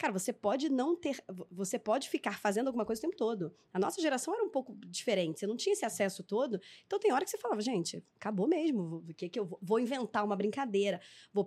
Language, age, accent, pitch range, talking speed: Portuguese, 20-39, Brazilian, 195-240 Hz, 240 wpm